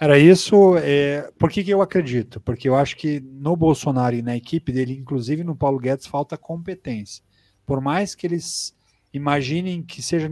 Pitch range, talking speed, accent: 140-185 Hz, 180 wpm, Brazilian